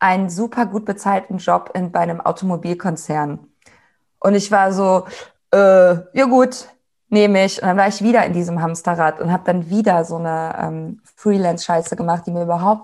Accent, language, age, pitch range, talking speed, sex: German, German, 20-39, 180-215 Hz, 180 wpm, female